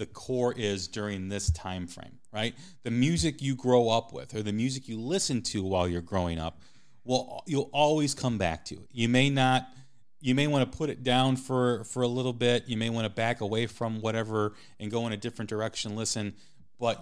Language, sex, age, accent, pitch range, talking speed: English, male, 30-49, American, 90-125 Hz, 220 wpm